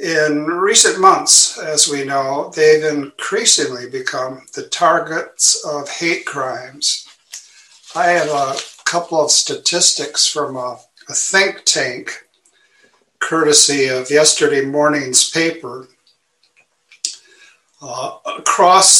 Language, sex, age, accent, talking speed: English, male, 60-79, American, 100 wpm